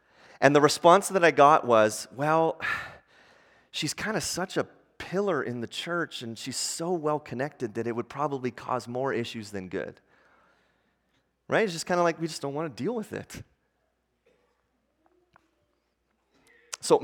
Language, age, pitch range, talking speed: English, 30-49, 135-180 Hz, 160 wpm